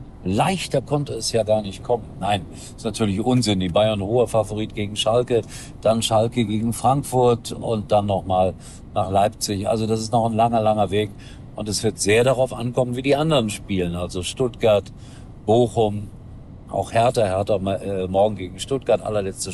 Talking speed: 170 wpm